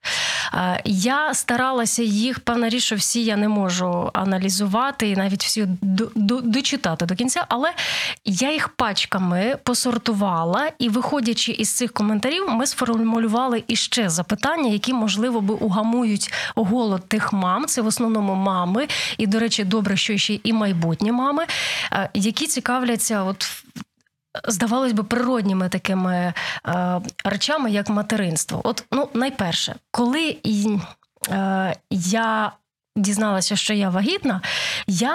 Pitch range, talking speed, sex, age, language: 205-255 Hz, 125 wpm, female, 20-39, Ukrainian